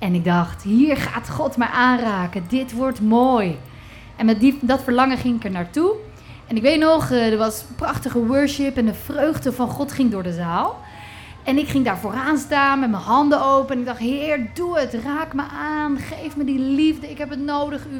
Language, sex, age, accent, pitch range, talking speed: Dutch, female, 30-49, Dutch, 220-295 Hz, 210 wpm